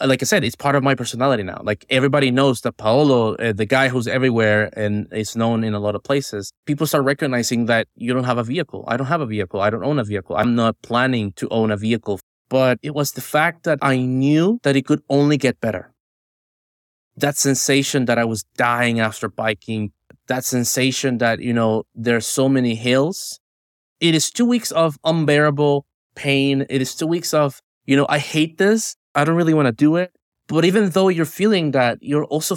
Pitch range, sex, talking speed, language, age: 115-150 Hz, male, 215 wpm, English, 20-39